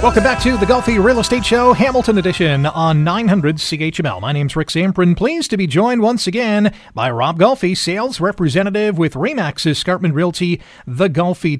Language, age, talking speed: English, 40-59, 175 wpm